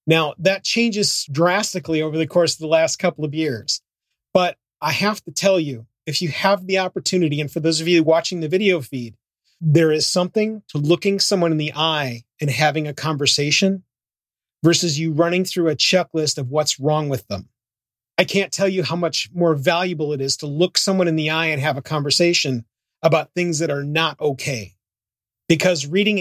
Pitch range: 145-180 Hz